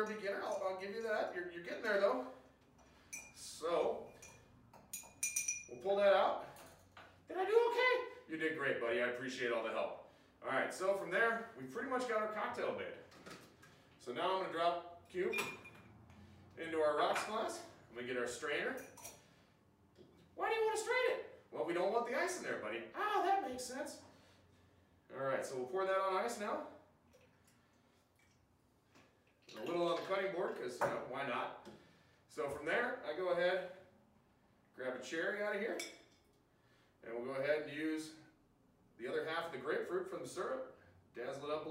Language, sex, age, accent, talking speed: English, male, 30-49, American, 185 wpm